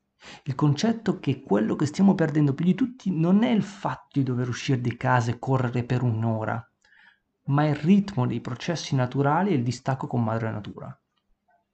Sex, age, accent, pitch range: male, 30-49, native, 120-155 Hz